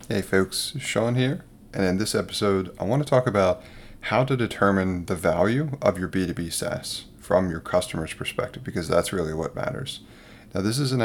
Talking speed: 190 wpm